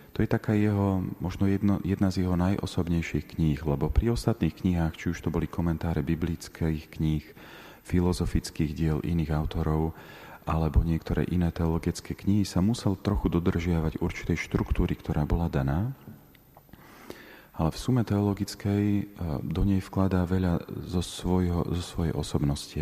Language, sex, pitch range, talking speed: Slovak, male, 80-95 Hz, 135 wpm